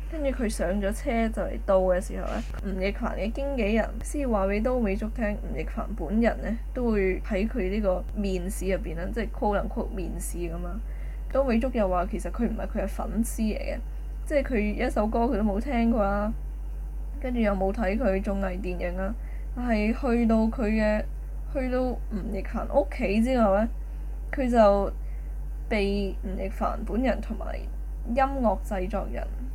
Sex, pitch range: female, 195-240 Hz